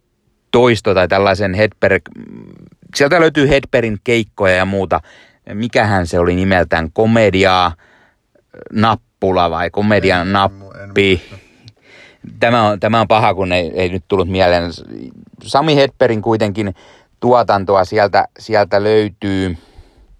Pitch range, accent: 95-115 Hz, native